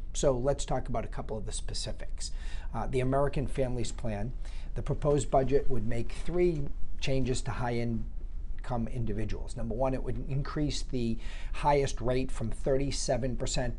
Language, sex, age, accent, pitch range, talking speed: English, male, 50-69, American, 105-135 Hz, 150 wpm